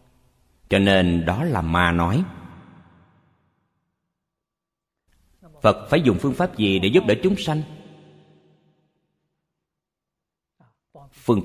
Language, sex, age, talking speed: Vietnamese, male, 50-69, 95 wpm